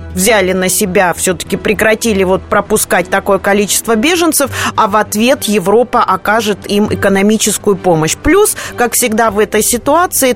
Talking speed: 135 wpm